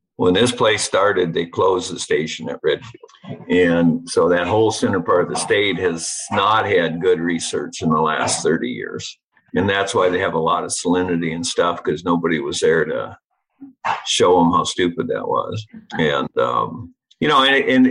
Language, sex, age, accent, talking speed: English, male, 50-69, American, 190 wpm